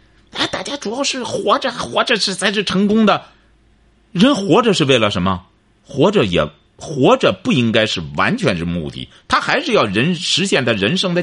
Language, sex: Chinese, male